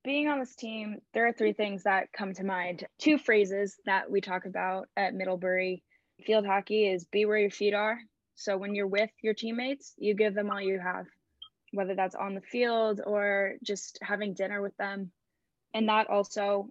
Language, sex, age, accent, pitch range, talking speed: English, female, 10-29, American, 190-215 Hz, 195 wpm